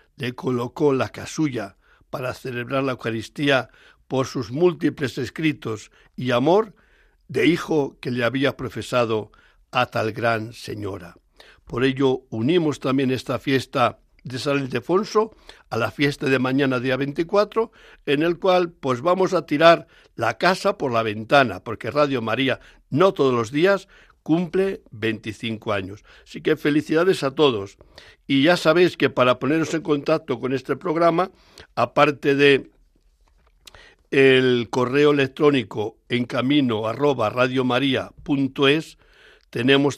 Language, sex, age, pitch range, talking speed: Spanish, male, 60-79, 125-155 Hz, 130 wpm